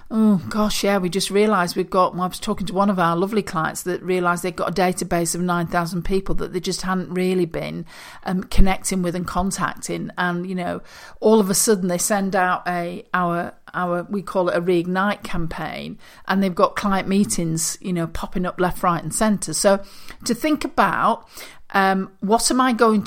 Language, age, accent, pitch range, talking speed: English, 50-69, British, 175-210 Hz, 205 wpm